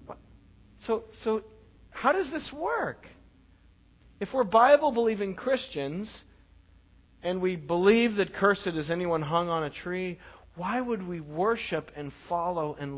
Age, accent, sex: 40-59, American, male